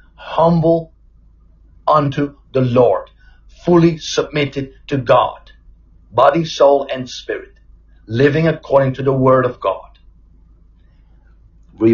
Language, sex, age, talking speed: English, male, 50-69, 100 wpm